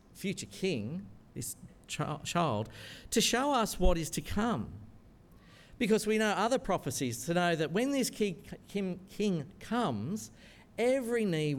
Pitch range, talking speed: 120-185 Hz, 135 wpm